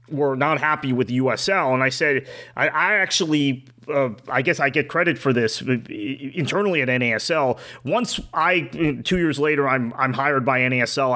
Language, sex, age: English, male, 30-49